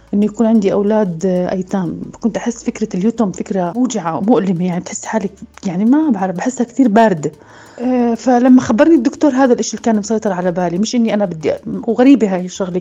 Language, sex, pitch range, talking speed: Arabic, female, 190-235 Hz, 185 wpm